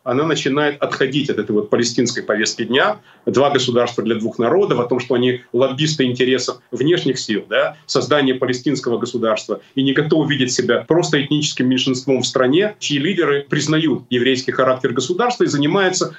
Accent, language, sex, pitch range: native, Russian, male, 130-160 Hz